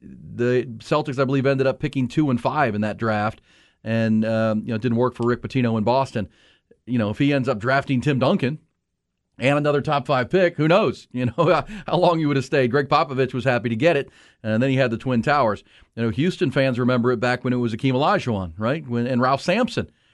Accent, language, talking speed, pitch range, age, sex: American, English, 240 wpm, 110-135 Hz, 40-59, male